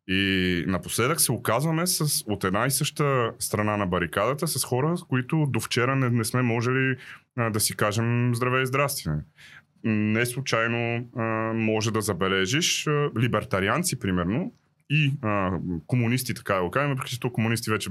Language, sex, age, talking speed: Bulgarian, male, 30-49, 160 wpm